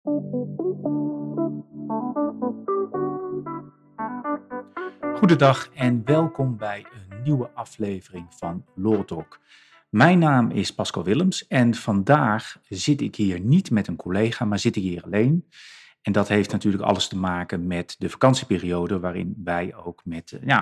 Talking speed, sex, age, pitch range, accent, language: 125 wpm, male, 40-59, 100-140 Hz, Dutch, Dutch